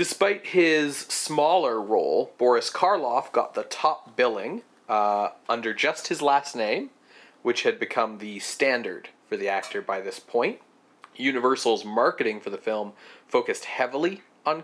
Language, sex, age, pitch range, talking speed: English, male, 30-49, 120-195 Hz, 145 wpm